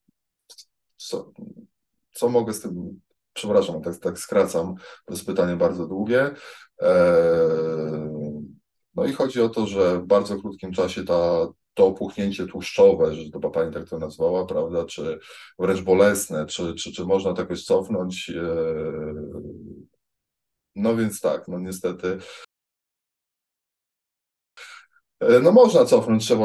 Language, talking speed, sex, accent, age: Polish, 120 wpm, male, native, 20-39